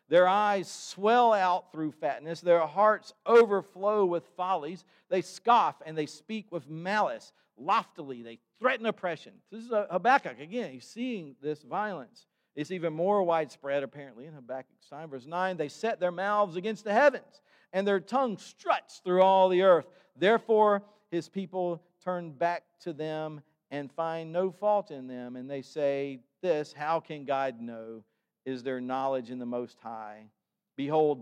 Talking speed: 160 wpm